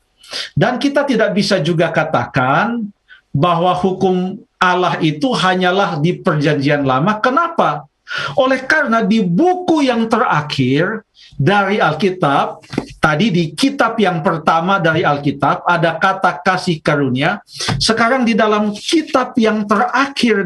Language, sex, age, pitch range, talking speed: Indonesian, male, 50-69, 155-220 Hz, 115 wpm